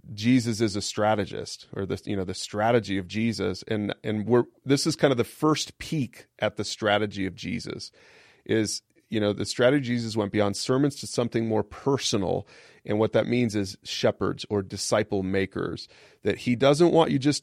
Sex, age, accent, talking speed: male, 30-49, American, 195 wpm